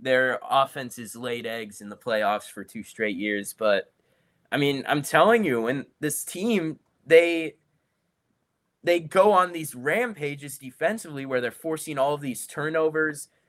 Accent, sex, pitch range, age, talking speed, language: American, male, 115-150 Hz, 20-39, 155 wpm, English